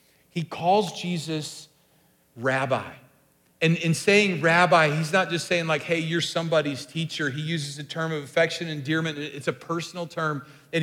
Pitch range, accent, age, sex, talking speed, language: 150-180 Hz, American, 40-59, male, 165 wpm, English